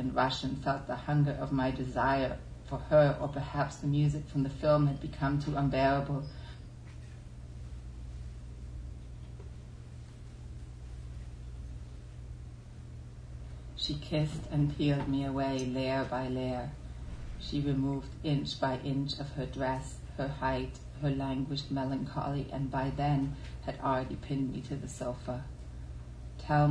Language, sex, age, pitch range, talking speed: English, female, 40-59, 120-140 Hz, 120 wpm